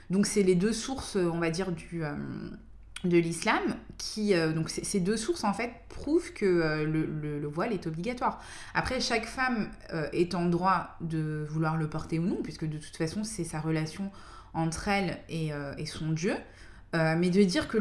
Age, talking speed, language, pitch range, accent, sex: 20-39, 210 wpm, French, 165-225 Hz, French, female